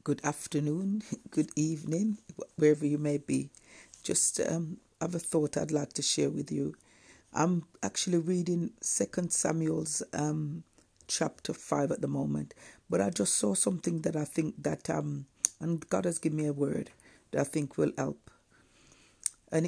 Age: 60-79